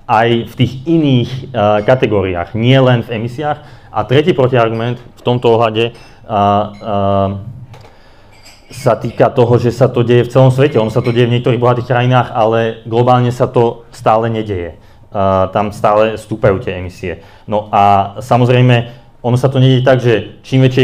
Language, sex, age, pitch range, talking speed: Slovak, male, 30-49, 105-125 Hz, 170 wpm